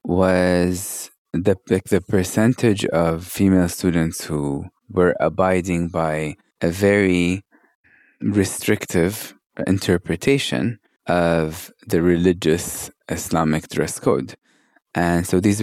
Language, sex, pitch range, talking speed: English, male, 80-100 Hz, 90 wpm